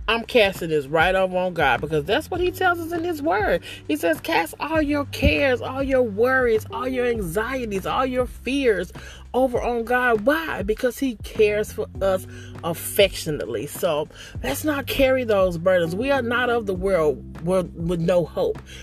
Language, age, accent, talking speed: English, 30-49, American, 180 wpm